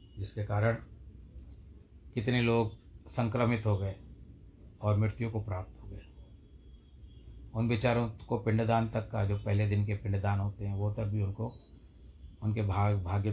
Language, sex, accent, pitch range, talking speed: Hindi, male, native, 100-115 Hz, 150 wpm